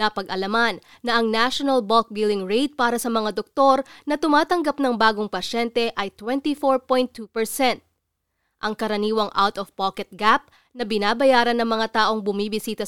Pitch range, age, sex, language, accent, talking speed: 215-270 Hz, 20-39, female, Filipino, native, 130 wpm